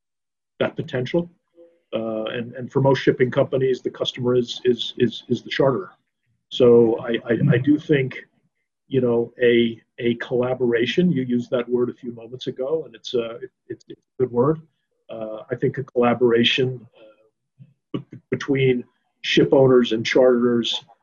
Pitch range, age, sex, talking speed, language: 120-155 Hz, 50-69, male, 155 wpm, English